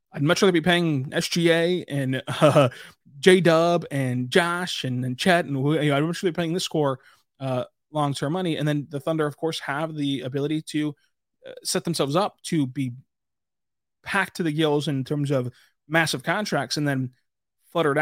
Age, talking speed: 20-39, 185 wpm